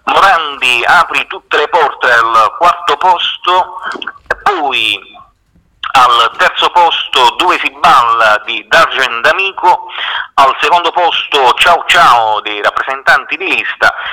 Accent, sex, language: native, male, Italian